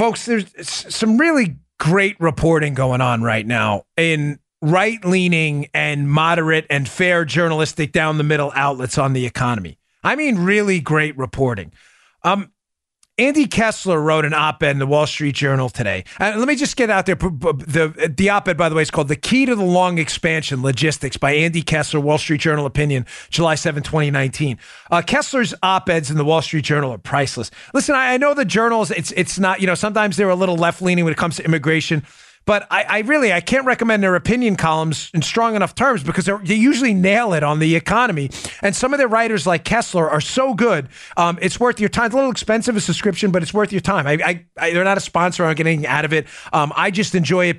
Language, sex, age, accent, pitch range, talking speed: English, male, 40-59, American, 150-205 Hz, 210 wpm